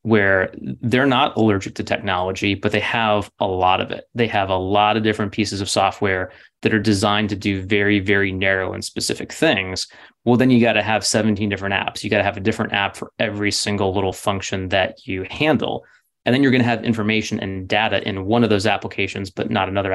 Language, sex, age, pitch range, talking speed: English, male, 20-39, 95-110 Hz, 225 wpm